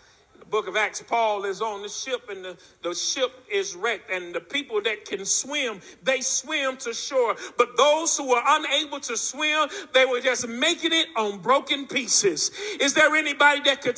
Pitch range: 255-325 Hz